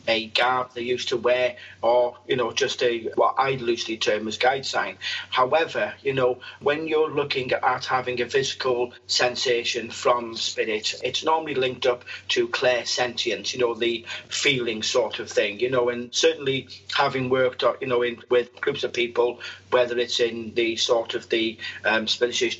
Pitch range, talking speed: 120-155 Hz, 175 wpm